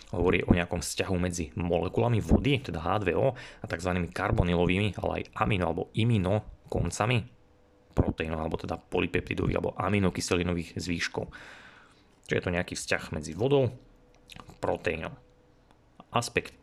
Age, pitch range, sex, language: 30-49, 85-105 Hz, male, Slovak